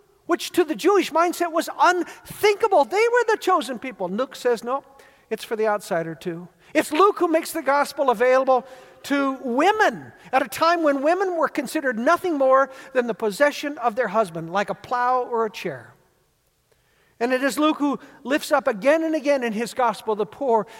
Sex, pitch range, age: male, 185-260 Hz, 50-69